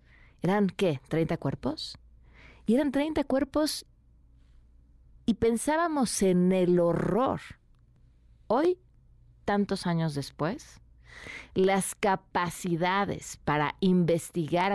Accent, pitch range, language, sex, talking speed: Mexican, 135-195 Hz, Spanish, female, 85 wpm